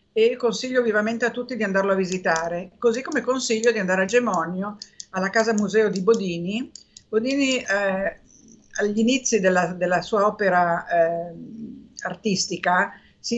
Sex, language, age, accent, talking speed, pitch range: female, Italian, 50-69, native, 145 wpm, 180-215 Hz